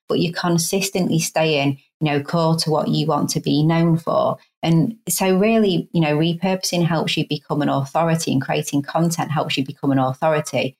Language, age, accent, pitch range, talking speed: English, 30-49, British, 140-165 Hz, 190 wpm